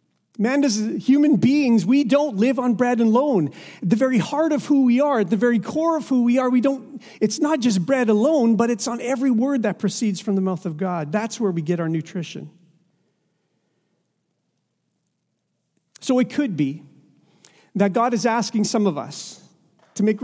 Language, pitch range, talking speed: English, 175-235 Hz, 185 wpm